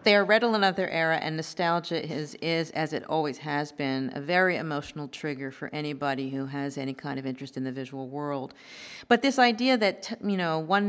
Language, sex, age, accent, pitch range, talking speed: English, female, 50-69, American, 145-175 Hz, 215 wpm